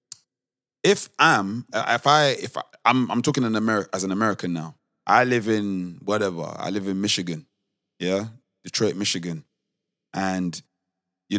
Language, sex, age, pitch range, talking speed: English, male, 20-39, 100-155 Hz, 150 wpm